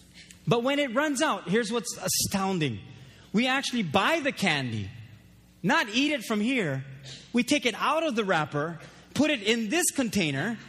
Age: 30-49